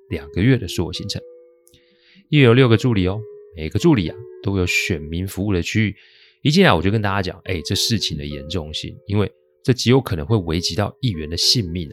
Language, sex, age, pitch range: Chinese, male, 30-49, 90-130 Hz